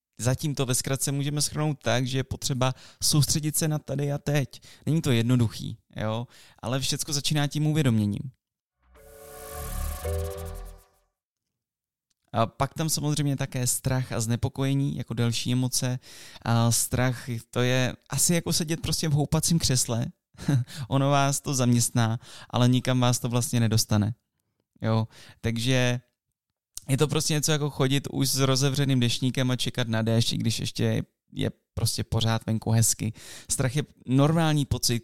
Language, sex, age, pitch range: Czech, male, 20-39, 115-140 Hz